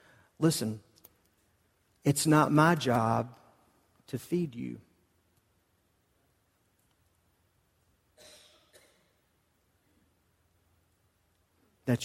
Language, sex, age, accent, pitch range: English, male, 40-59, American, 105-165 Hz